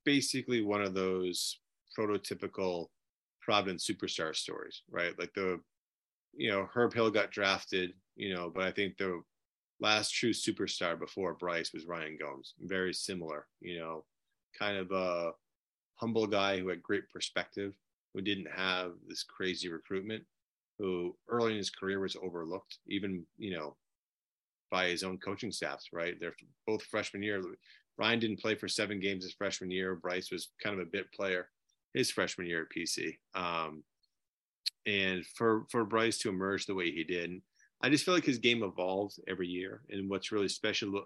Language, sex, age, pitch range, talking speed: English, male, 30-49, 90-105 Hz, 170 wpm